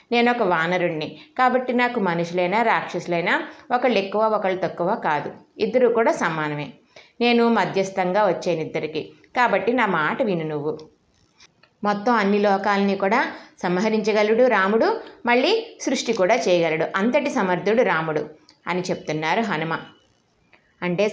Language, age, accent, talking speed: Telugu, 20-39, native, 115 wpm